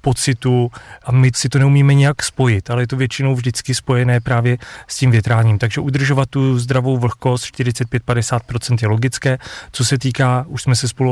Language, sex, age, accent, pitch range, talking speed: Czech, male, 30-49, native, 115-130 Hz, 180 wpm